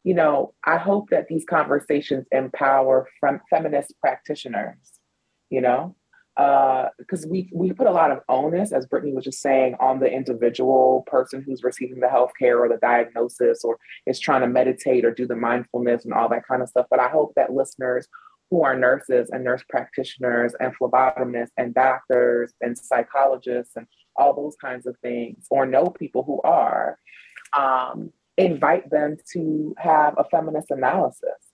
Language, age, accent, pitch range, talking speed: English, 30-49, American, 125-160 Hz, 170 wpm